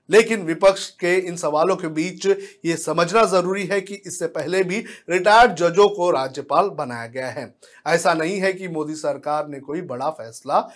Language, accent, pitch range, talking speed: Hindi, native, 155-205 Hz, 180 wpm